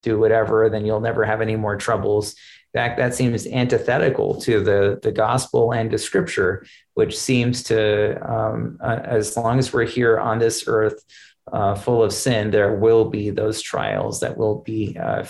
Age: 30-49